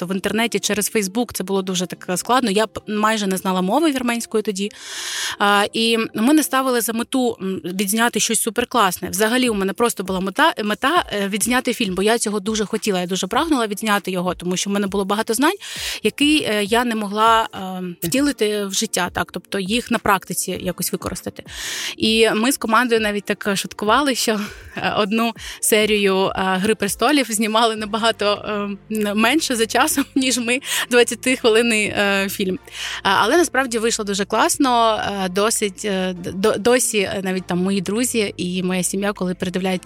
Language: Ukrainian